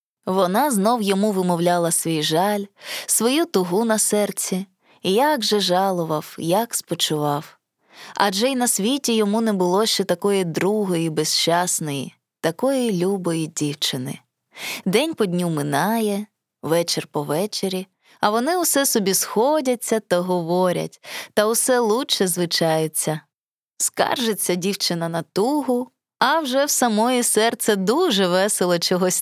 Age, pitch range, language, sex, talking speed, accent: 20-39, 170-225 Hz, Ukrainian, female, 120 wpm, native